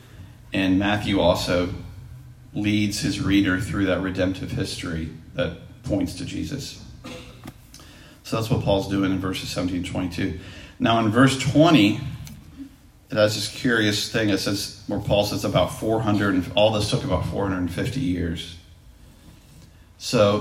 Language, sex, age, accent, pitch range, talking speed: English, male, 40-59, American, 95-135 Hz, 140 wpm